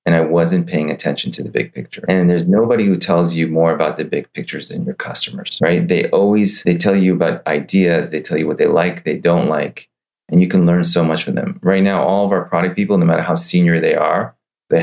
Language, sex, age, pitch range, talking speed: English, male, 30-49, 85-100 Hz, 250 wpm